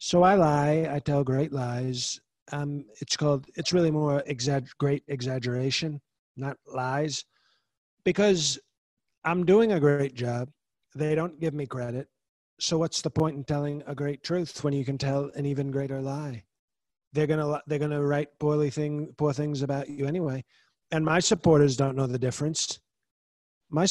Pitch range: 130-165 Hz